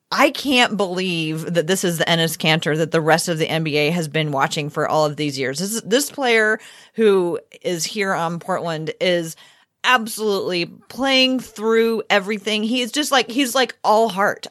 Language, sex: English, female